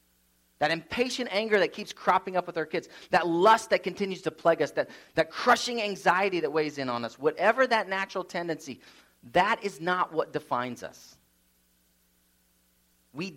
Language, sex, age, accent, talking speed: English, male, 30-49, American, 165 wpm